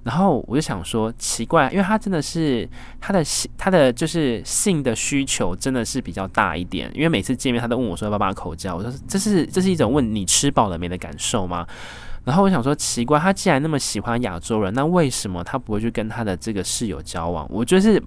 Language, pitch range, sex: Chinese, 100-140 Hz, male